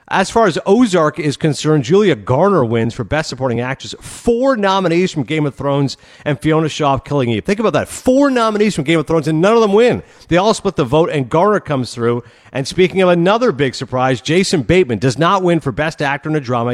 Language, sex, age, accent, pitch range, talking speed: English, male, 50-69, American, 120-165 Hz, 230 wpm